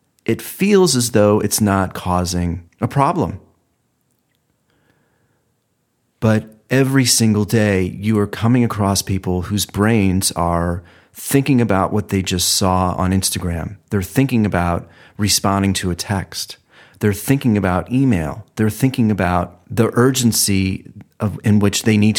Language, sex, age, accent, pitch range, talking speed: English, male, 40-59, American, 95-110 Hz, 135 wpm